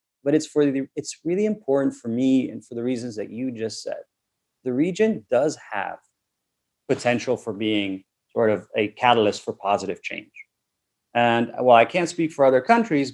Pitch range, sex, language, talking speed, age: 120-155 Hz, male, English, 185 wpm, 30-49